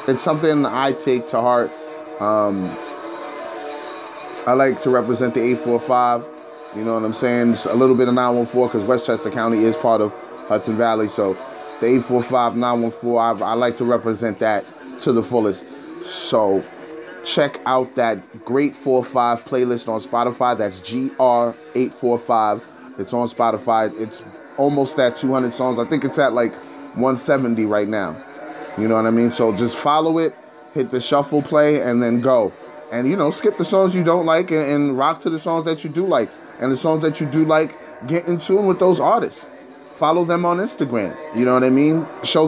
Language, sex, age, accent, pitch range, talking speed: English, male, 20-39, American, 120-155 Hz, 180 wpm